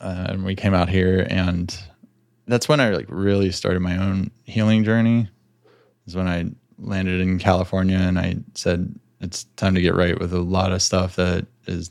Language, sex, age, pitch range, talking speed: English, male, 20-39, 90-100 Hz, 190 wpm